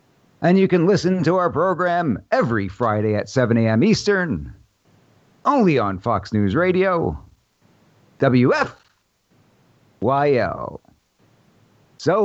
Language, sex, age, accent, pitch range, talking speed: English, male, 50-69, American, 110-145 Hz, 100 wpm